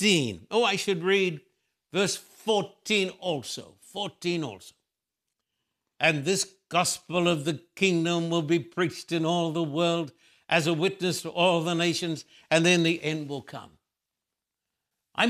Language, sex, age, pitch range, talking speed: English, male, 60-79, 150-190 Hz, 140 wpm